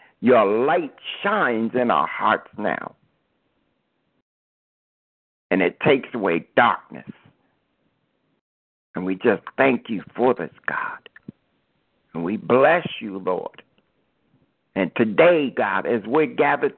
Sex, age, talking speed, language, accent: male, 60-79, 110 wpm, English, American